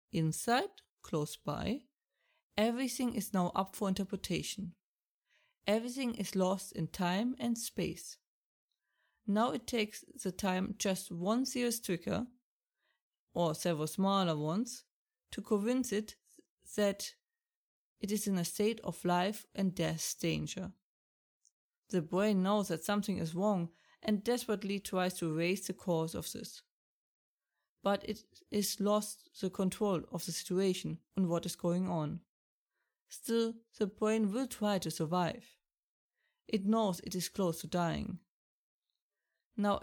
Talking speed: 135 wpm